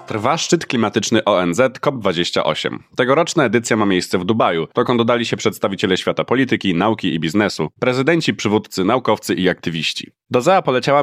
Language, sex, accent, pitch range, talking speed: Polish, male, native, 105-140 Hz, 150 wpm